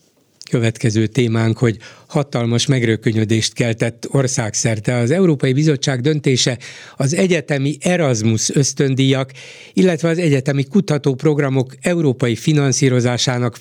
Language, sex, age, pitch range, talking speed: Hungarian, male, 60-79, 120-155 Hz, 95 wpm